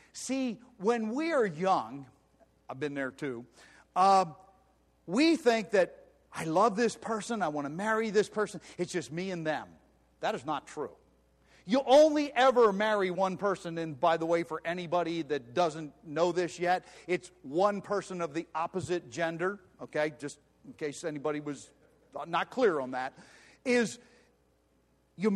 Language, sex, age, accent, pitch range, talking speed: English, male, 50-69, American, 165-245 Hz, 160 wpm